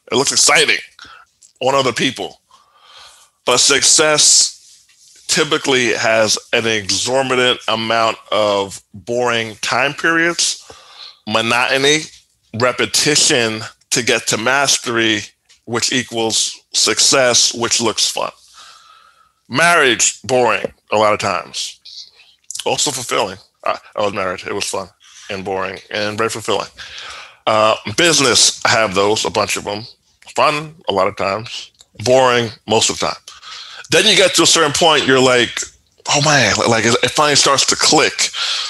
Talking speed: 130 wpm